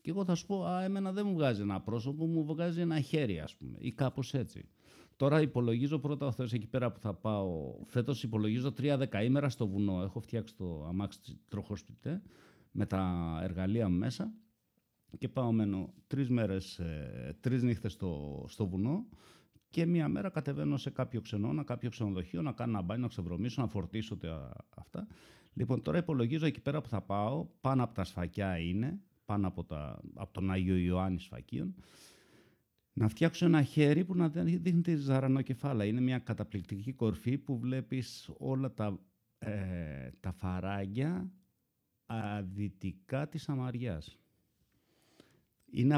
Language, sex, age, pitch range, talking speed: Greek, male, 50-69, 95-140 Hz, 155 wpm